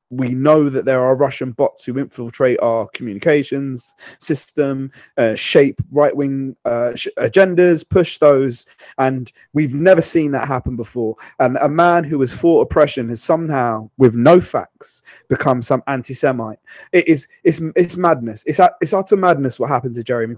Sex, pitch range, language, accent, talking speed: male, 120-155 Hz, English, British, 170 wpm